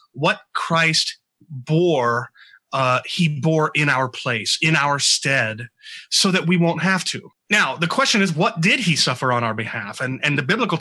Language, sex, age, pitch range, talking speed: English, male, 30-49, 130-175 Hz, 185 wpm